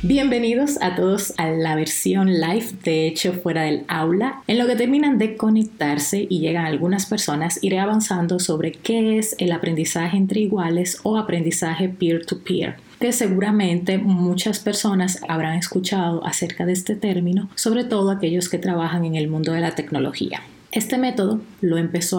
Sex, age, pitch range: female, 30-49, 170-210 Hz